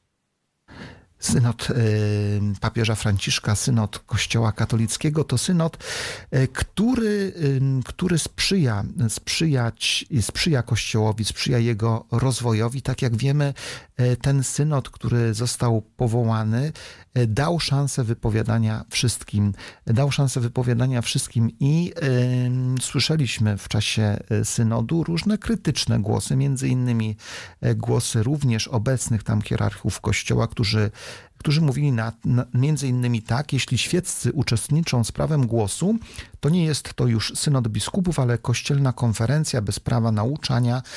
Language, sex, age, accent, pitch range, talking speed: Polish, male, 40-59, native, 115-135 Hz, 115 wpm